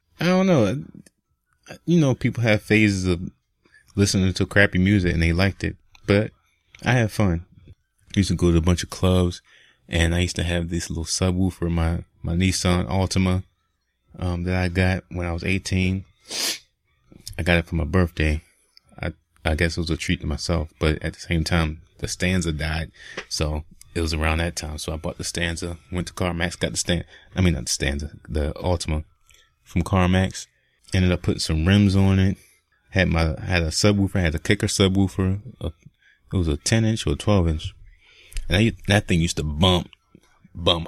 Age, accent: 30-49, American